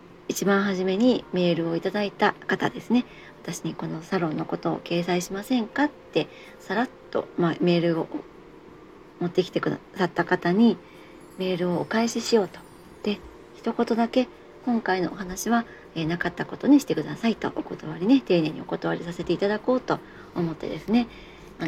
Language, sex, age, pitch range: Japanese, male, 40-59, 170-235 Hz